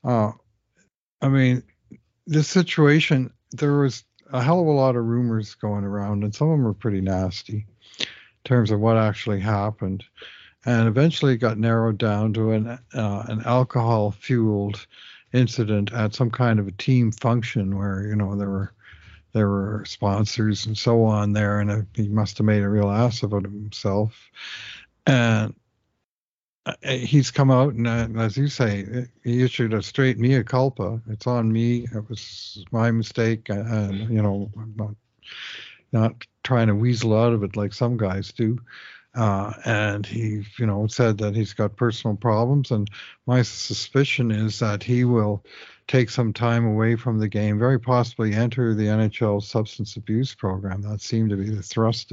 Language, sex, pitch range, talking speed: English, male, 105-120 Hz, 170 wpm